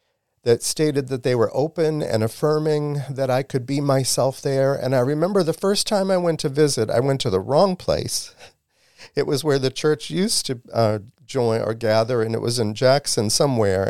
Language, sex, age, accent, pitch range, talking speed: English, male, 50-69, American, 115-160 Hz, 205 wpm